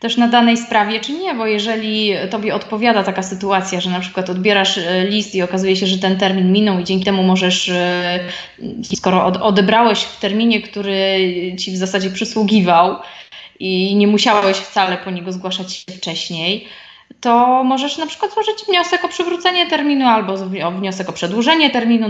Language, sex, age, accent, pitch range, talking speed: Polish, female, 20-39, native, 185-230 Hz, 165 wpm